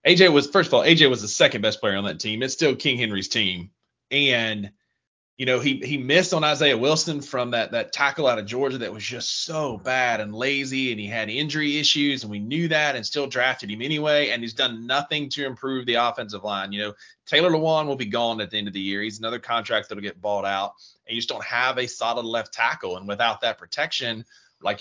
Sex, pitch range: male, 110-150 Hz